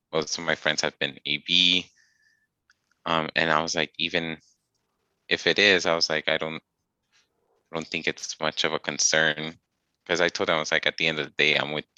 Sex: male